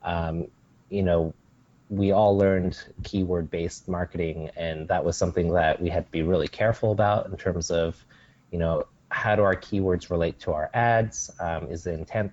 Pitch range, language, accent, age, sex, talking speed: 85-105 Hz, English, American, 30-49, male, 185 wpm